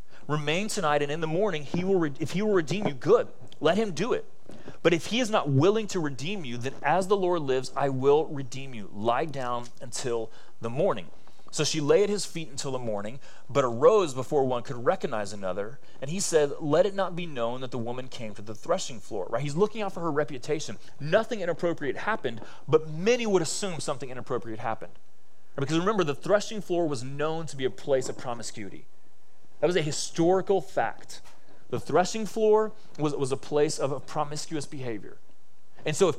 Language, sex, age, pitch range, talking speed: English, male, 30-49, 125-175 Hz, 200 wpm